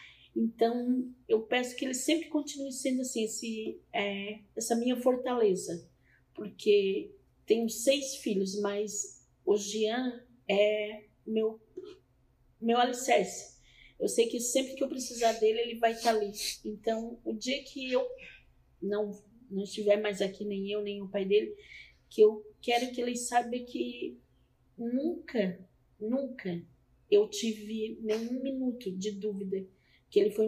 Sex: female